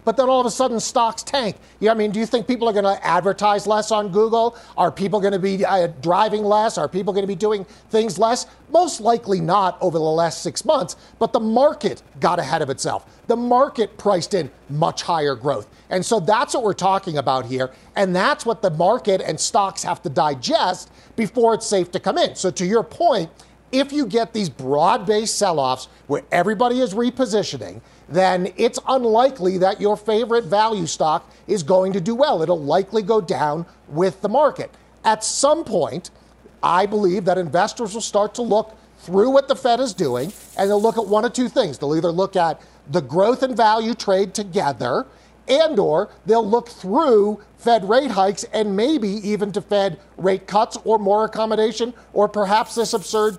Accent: American